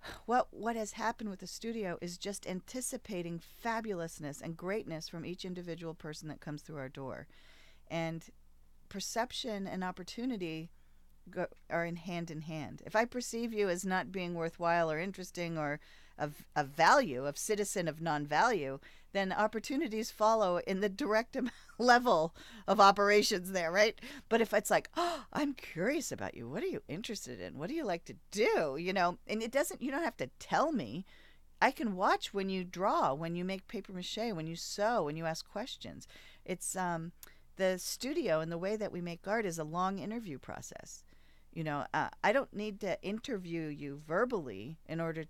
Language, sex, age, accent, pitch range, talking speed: English, female, 40-59, American, 155-220 Hz, 185 wpm